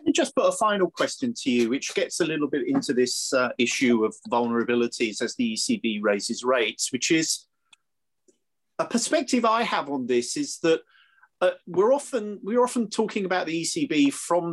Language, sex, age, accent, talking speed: English, male, 30-49, British, 185 wpm